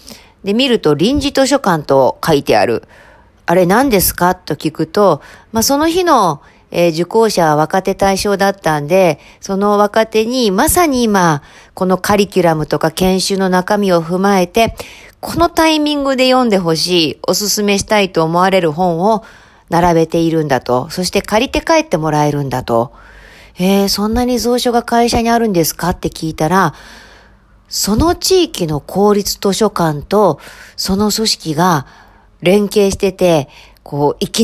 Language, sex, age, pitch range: Japanese, female, 40-59, 170-235 Hz